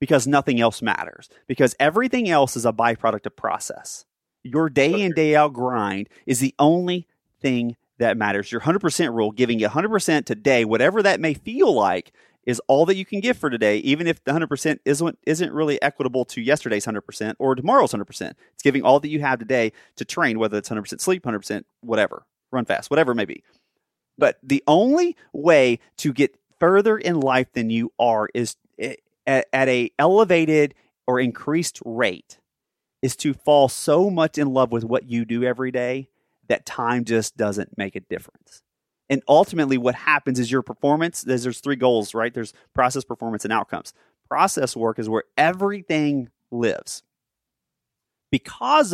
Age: 30-49